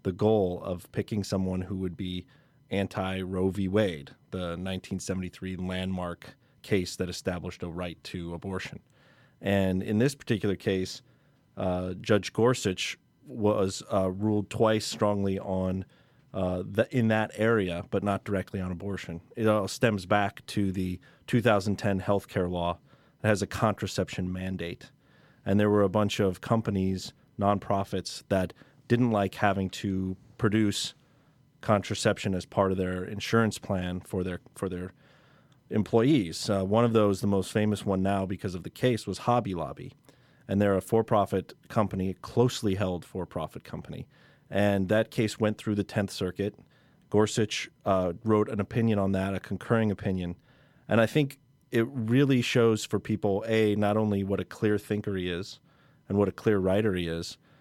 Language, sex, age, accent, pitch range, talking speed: English, male, 30-49, American, 95-115 Hz, 160 wpm